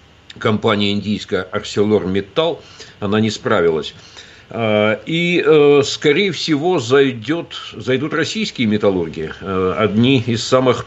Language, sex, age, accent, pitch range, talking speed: Russian, male, 60-79, native, 105-135 Hz, 85 wpm